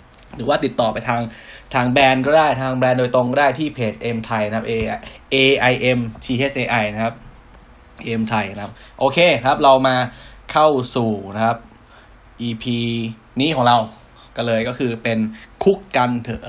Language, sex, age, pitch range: Thai, male, 10-29, 115-130 Hz